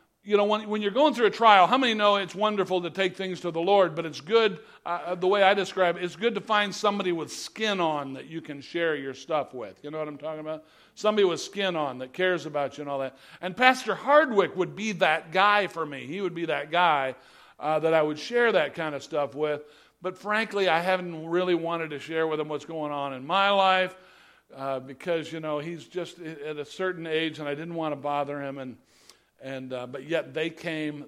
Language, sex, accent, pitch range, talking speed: English, male, American, 150-185 Hz, 240 wpm